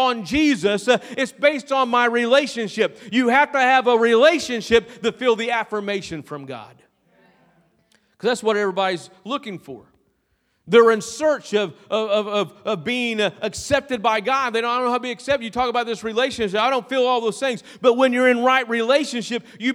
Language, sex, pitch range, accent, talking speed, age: English, male, 200-255 Hz, American, 190 wpm, 40-59